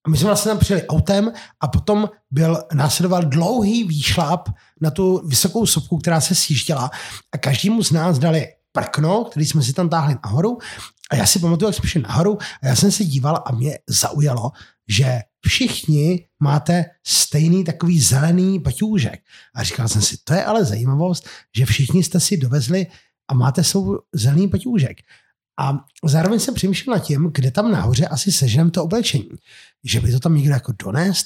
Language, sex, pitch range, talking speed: Czech, male, 145-185 Hz, 175 wpm